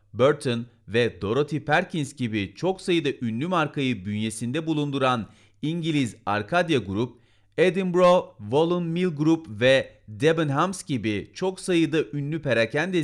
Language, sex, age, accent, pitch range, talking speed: Turkish, male, 40-59, native, 110-155 Hz, 115 wpm